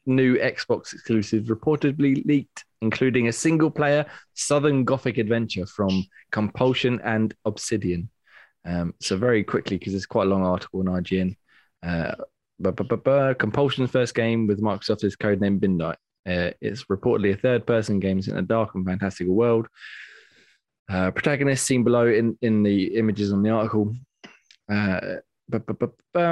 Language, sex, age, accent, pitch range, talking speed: English, male, 20-39, British, 95-115 Hz, 145 wpm